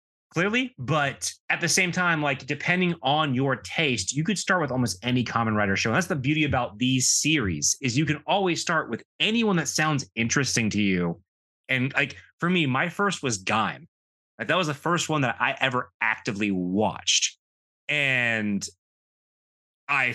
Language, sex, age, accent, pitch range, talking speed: English, male, 30-49, American, 115-155 Hz, 180 wpm